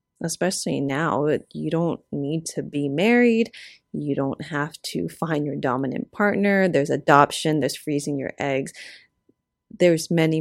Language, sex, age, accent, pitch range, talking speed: English, female, 30-49, American, 145-180 Hz, 140 wpm